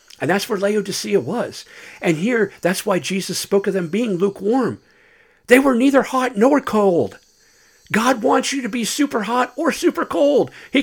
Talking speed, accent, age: 175 wpm, American, 50-69